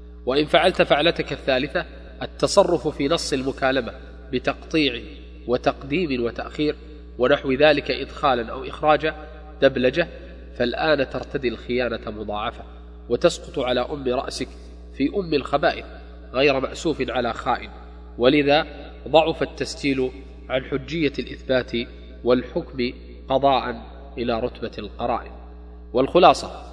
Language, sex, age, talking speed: Arabic, male, 20-39, 100 wpm